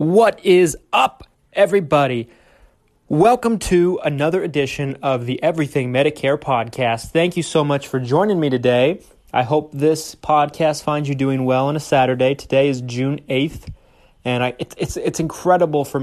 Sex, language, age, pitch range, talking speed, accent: male, English, 20-39, 125-155 Hz, 155 wpm, American